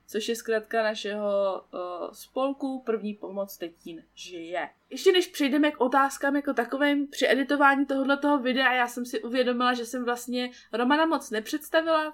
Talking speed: 160 wpm